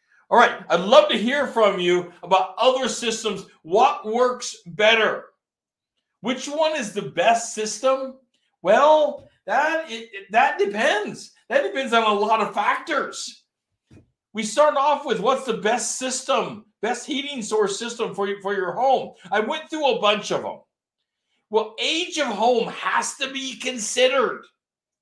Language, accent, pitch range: English, American, 200-275 Hz